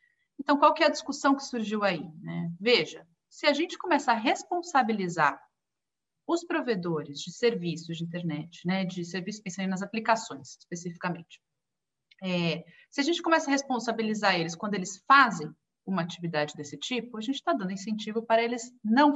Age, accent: 30-49, Brazilian